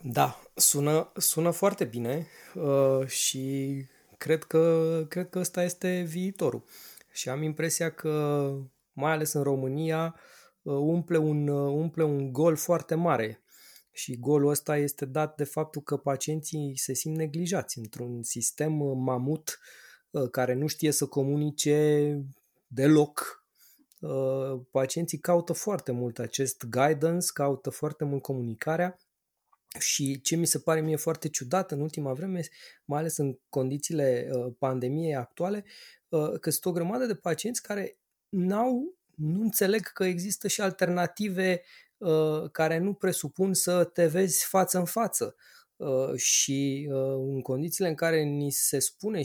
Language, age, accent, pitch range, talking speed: Romanian, 20-39, native, 140-175 Hz, 130 wpm